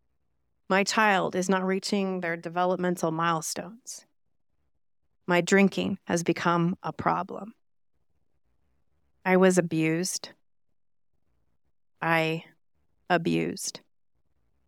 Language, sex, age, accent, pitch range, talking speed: English, female, 30-49, American, 165-215 Hz, 80 wpm